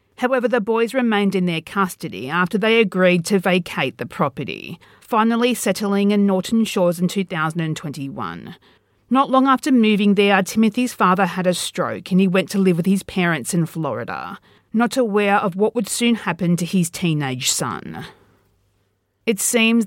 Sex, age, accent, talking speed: female, 40-59, Australian, 165 wpm